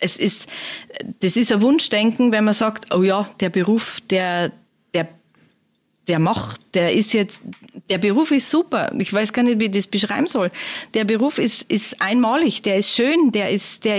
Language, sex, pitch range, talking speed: German, female, 195-255 Hz, 190 wpm